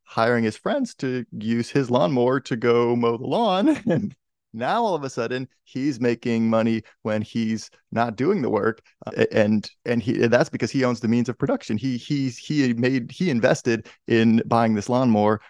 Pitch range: 110-125 Hz